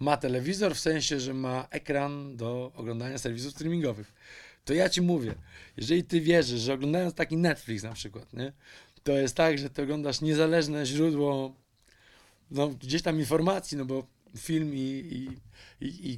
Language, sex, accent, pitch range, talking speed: Polish, male, native, 135-170 Hz, 150 wpm